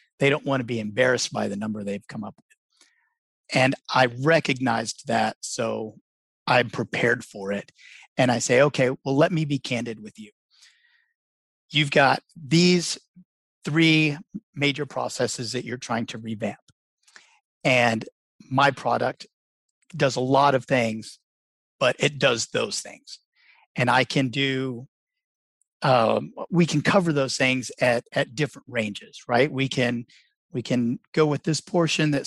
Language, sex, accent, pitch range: English, male, American, 120-155 Hz